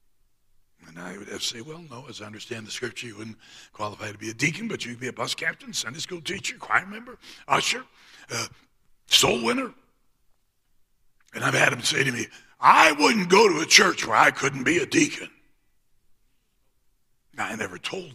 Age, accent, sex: 60-79, American, male